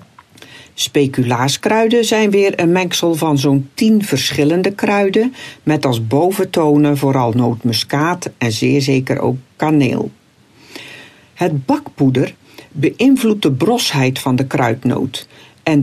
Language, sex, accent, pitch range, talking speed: Dutch, female, Dutch, 130-175 Hz, 110 wpm